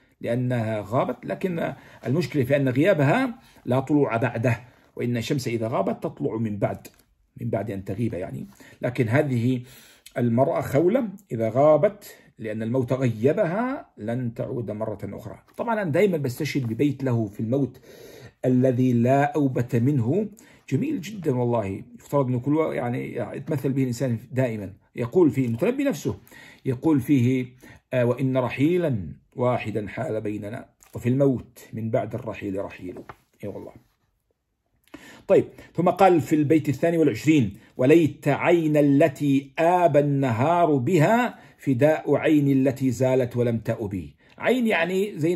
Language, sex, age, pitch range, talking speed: Arabic, male, 50-69, 120-165 Hz, 130 wpm